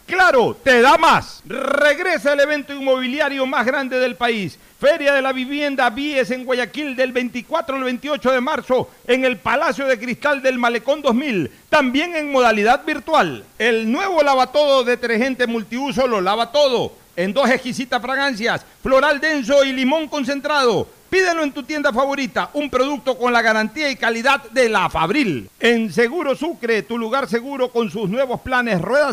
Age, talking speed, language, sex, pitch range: 60-79, 165 wpm, Spanish, male, 240-280 Hz